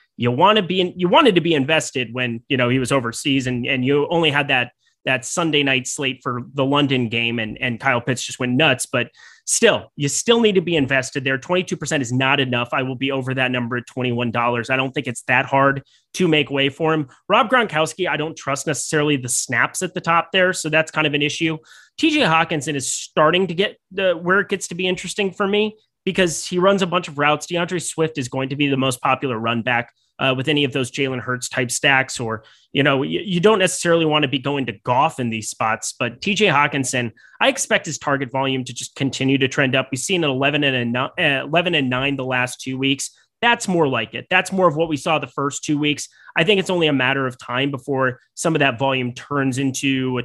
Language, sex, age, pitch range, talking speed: English, male, 30-49, 125-160 Hz, 240 wpm